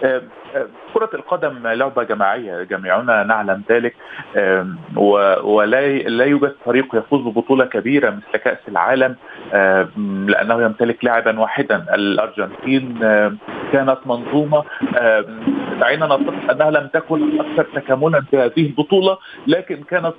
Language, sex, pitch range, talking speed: Arabic, male, 120-145 Hz, 120 wpm